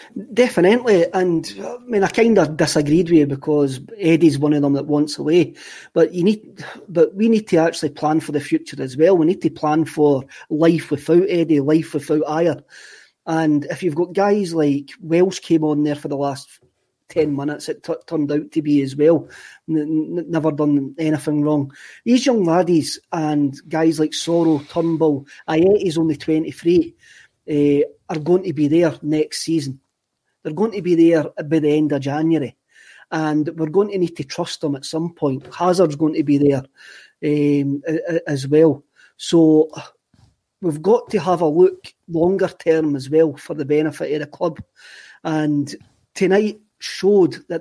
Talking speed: 180 wpm